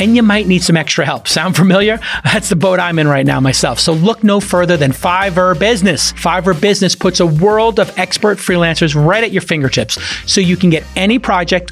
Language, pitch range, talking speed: English, 155-195 Hz, 215 wpm